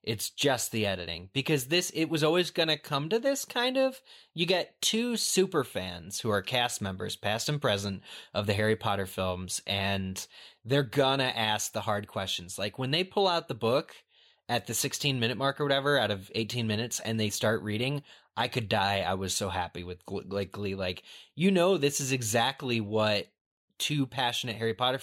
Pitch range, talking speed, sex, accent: 105-155 Hz, 195 wpm, male, American